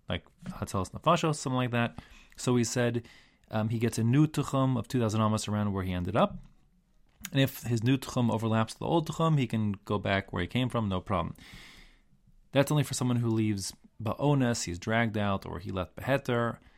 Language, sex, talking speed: English, male, 205 wpm